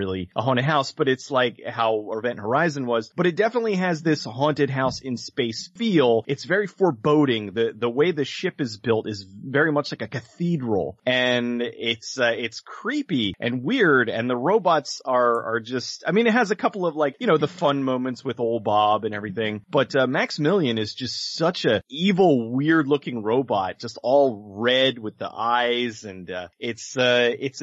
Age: 30-49